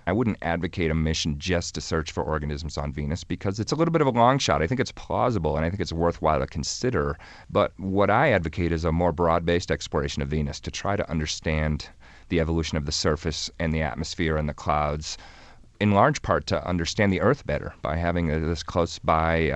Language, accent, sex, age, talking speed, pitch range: English, American, male, 40-59, 215 wpm, 80-90 Hz